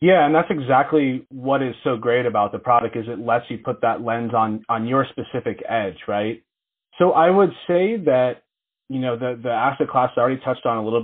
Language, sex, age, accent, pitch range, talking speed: English, male, 30-49, American, 115-135 Hz, 225 wpm